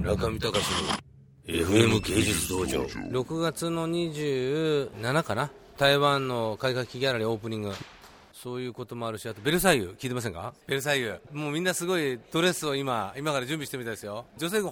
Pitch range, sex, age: 125-180 Hz, male, 40-59